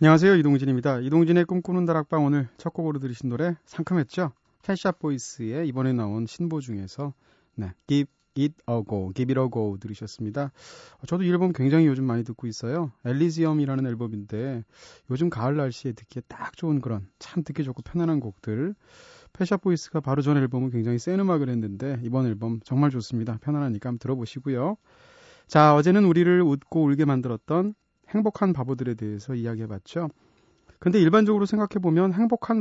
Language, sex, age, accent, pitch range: Korean, male, 30-49, native, 120-170 Hz